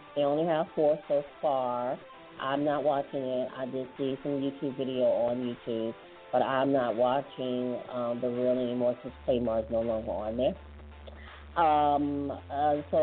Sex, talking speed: female, 160 wpm